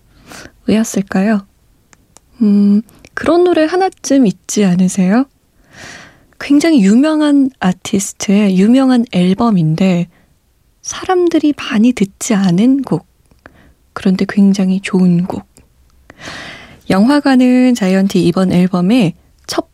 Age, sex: 20-39, female